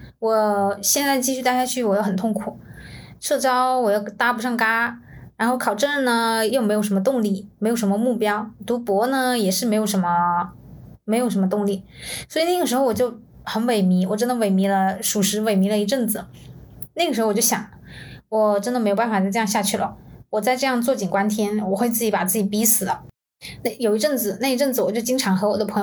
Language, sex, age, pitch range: Chinese, female, 20-39, 205-250 Hz